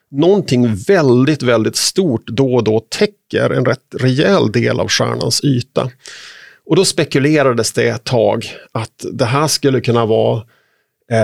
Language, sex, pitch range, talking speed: Swedish, male, 125-155 Hz, 145 wpm